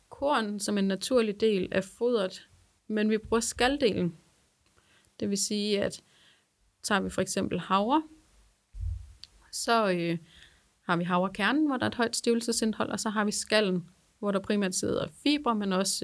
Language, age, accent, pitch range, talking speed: Danish, 30-49, native, 195-235 Hz, 160 wpm